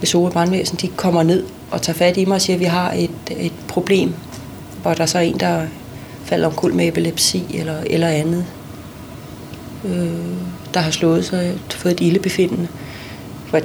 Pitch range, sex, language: 165-185 Hz, female, Danish